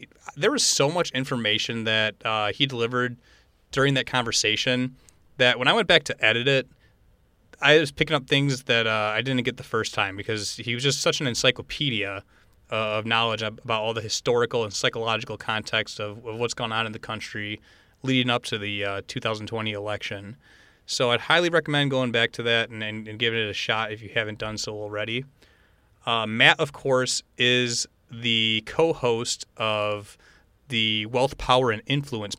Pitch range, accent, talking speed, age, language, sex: 110-125 Hz, American, 185 wpm, 30-49, English, male